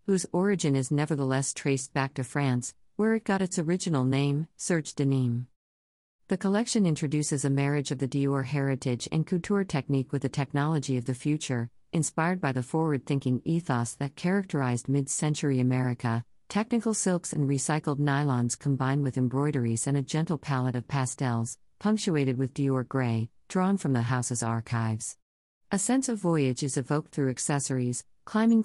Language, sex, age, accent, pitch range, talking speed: English, female, 50-69, American, 130-165 Hz, 155 wpm